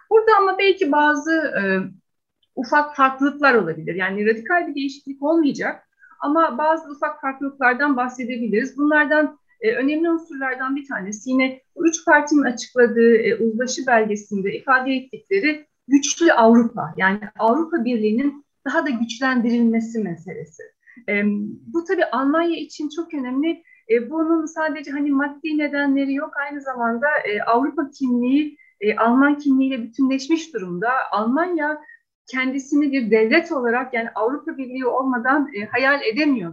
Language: Turkish